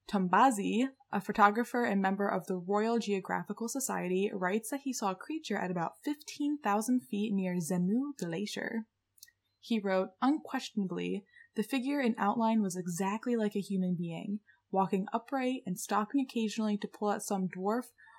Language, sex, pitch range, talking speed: English, female, 190-235 Hz, 150 wpm